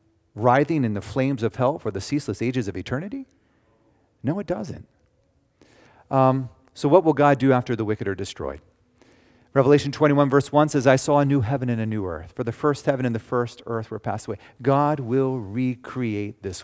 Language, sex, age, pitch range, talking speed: English, male, 40-59, 110-145 Hz, 200 wpm